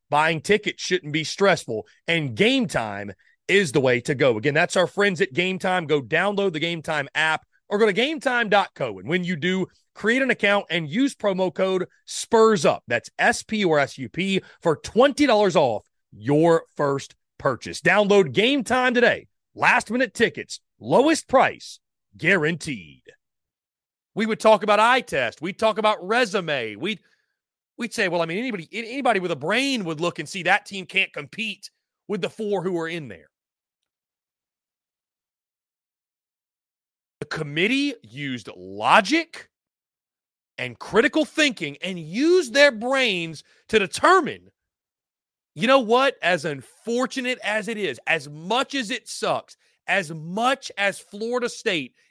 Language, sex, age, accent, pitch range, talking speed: English, male, 30-49, American, 165-240 Hz, 150 wpm